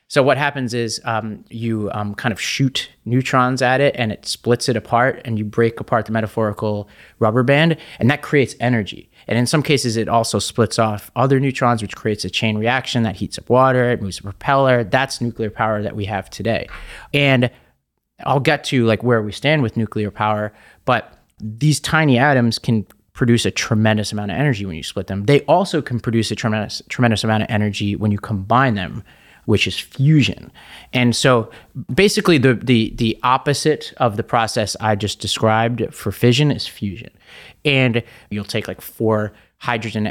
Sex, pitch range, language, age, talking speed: male, 105-130 Hz, English, 30-49, 190 wpm